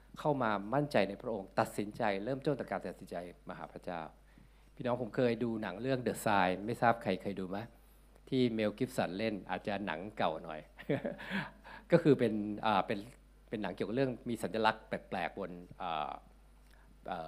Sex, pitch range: male, 95-125 Hz